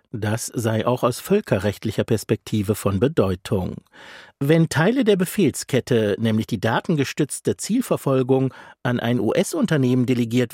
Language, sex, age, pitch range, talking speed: German, male, 50-69, 110-160 Hz, 115 wpm